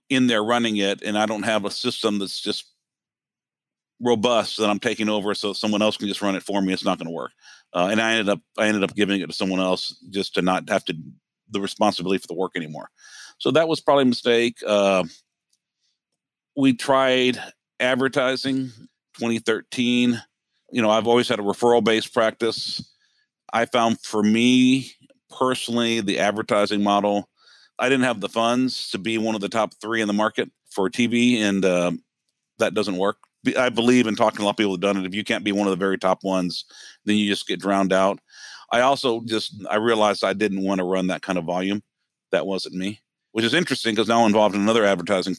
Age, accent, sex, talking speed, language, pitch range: 50-69, American, male, 215 wpm, English, 95-120 Hz